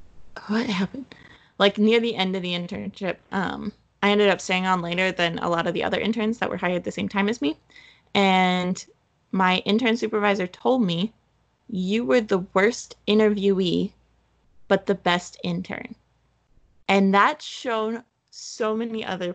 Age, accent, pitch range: 20-39, American, 185-220 Hz